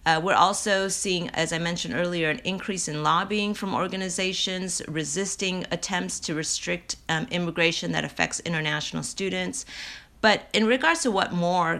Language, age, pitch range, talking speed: English, 30-49, 165-215 Hz, 155 wpm